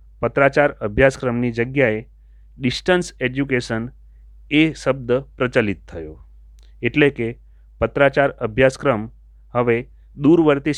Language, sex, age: Gujarati, male, 30-49